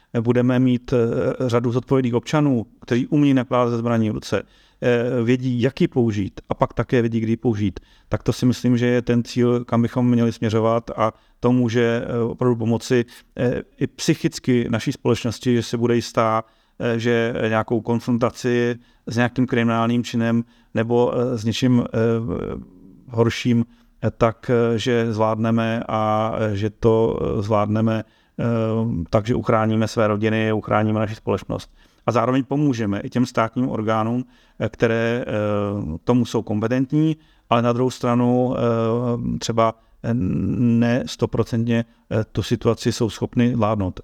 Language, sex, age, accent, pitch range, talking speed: Czech, male, 40-59, native, 115-125 Hz, 130 wpm